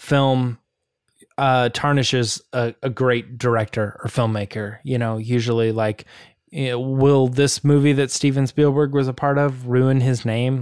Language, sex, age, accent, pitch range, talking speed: English, male, 20-39, American, 120-150 Hz, 145 wpm